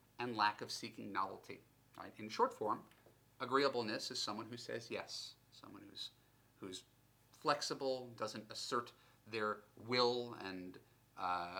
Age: 30-49